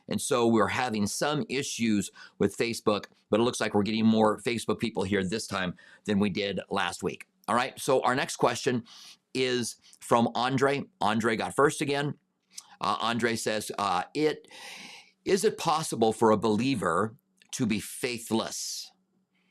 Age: 50-69